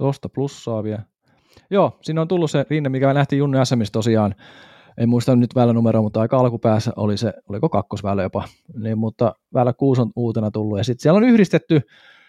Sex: male